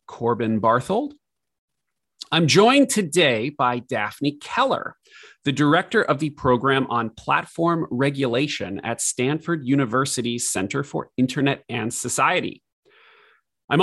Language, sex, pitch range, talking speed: English, male, 120-165 Hz, 110 wpm